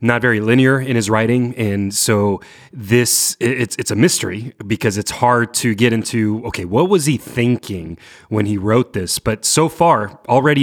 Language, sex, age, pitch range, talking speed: English, male, 30-49, 100-130 Hz, 180 wpm